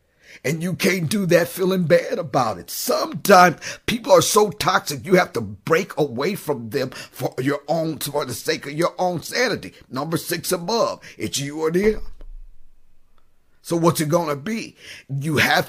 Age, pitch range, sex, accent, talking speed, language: 50-69, 140-170 Hz, male, American, 175 wpm, English